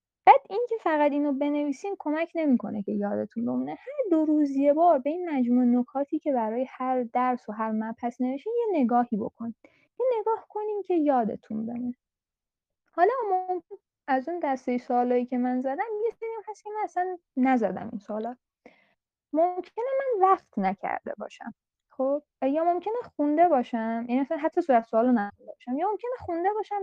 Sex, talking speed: female, 170 wpm